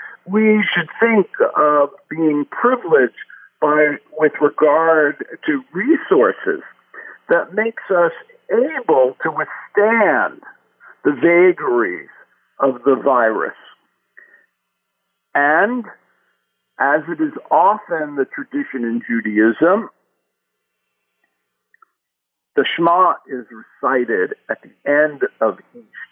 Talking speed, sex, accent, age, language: 90 wpm, male, American, 50-69, English